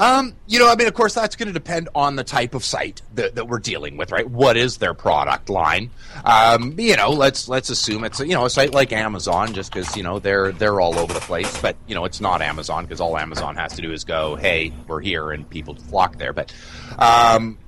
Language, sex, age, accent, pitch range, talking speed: English, male, 30-49, American, 95-130 Hz, 250 wpm